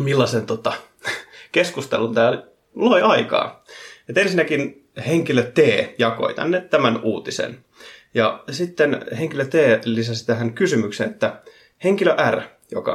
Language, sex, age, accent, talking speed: Finnish, male, 30-49, native, 115 wpm